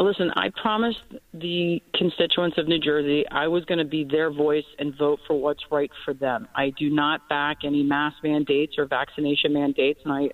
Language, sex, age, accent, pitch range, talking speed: English, female, 40-59, American, 150-170 Hz, 195 wpm